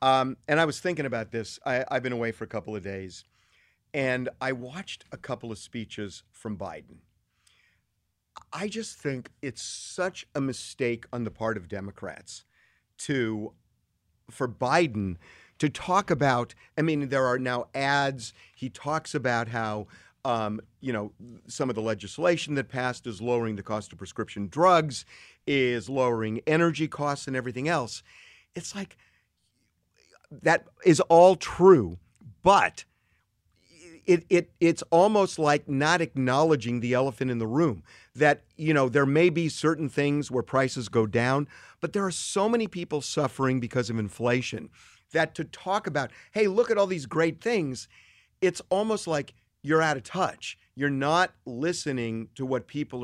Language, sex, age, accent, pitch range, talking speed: English, male, 50-69, American, 115-160 Hz, 160 wpm